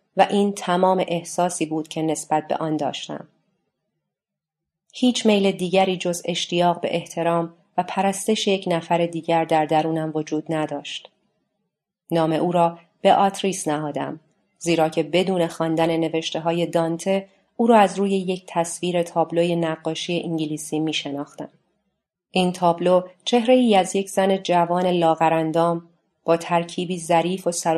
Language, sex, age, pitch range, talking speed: Persian, female, 30-49, 160-185 Hz, 130 wpm